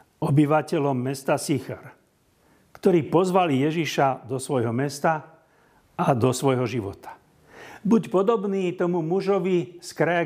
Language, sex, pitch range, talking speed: Slovak, male, 120-155 Hz, 110 wpm